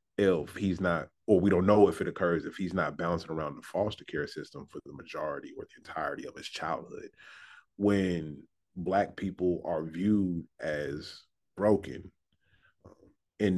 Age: 30-49